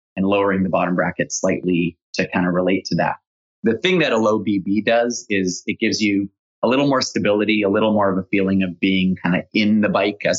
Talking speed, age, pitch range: 235 wpm, 30-49, 95-105 Hz